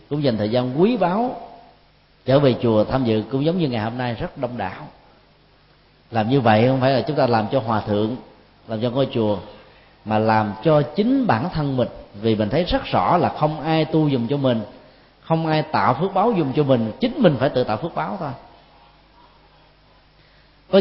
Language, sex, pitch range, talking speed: Vietnamese, male, 115-155 Hz, 210 wpm